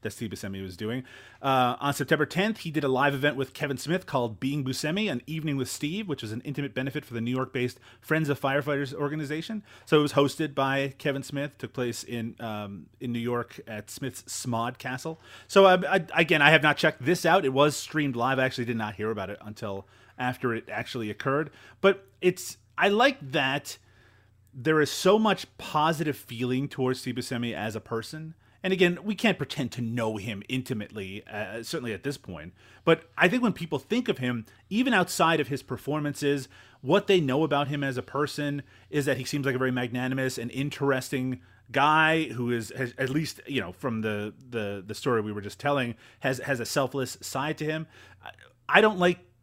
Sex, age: male, 30-49